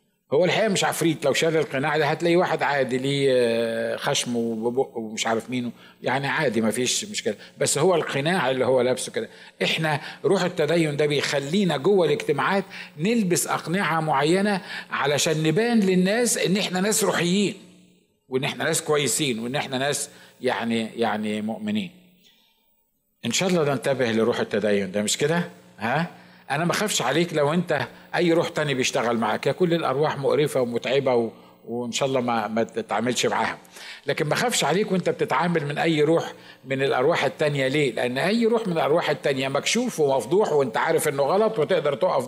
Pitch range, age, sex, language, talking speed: 130-190 Hz, 50-69, male, Arabic, 165 wpm